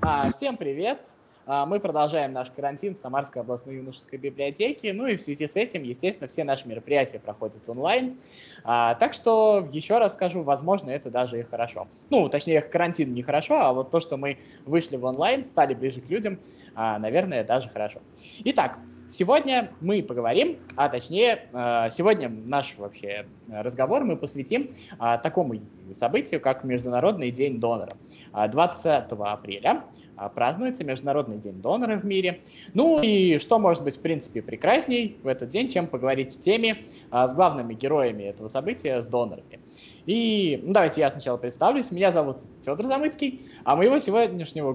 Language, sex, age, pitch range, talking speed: Russian, male, 20-39, 125-185 Hz, 155 wpm